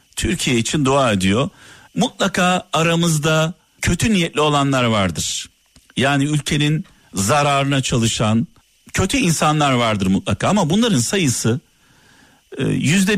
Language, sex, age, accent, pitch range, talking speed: Turkish, male, 50-69, native, 120-170 Hz, 100 wpm